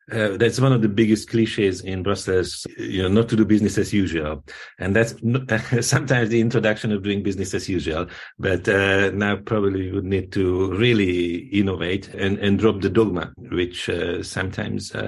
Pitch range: 100-120 Hz